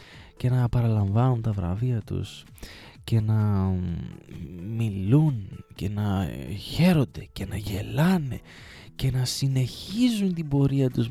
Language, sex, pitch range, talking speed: Greek, male, 115-175 Hz, 115 wpm